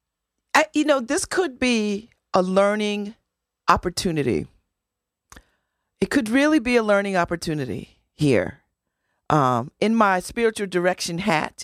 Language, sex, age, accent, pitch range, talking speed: English, female, 40-59, American, 165-220 Hz, 115 wpm